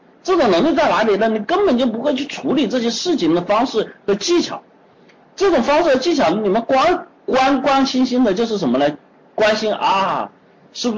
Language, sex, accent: Chinese, male, native